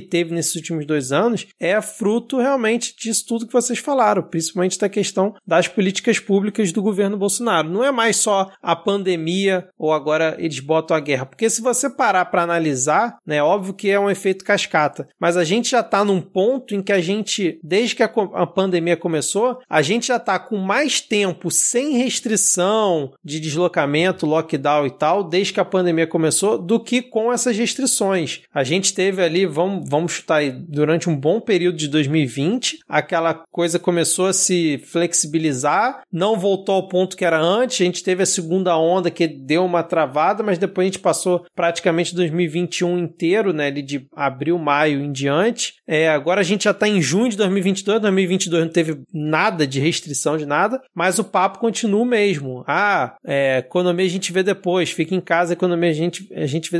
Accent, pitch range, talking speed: Brazilian, 165-210 Hz, 190 wpm